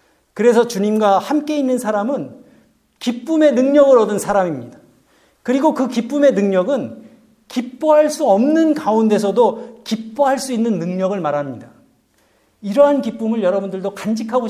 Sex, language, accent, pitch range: male, Korean, native, 170-255 Hz